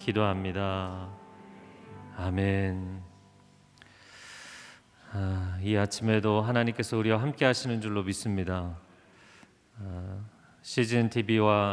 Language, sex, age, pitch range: Korean, male, 40-59, 95-115 Hz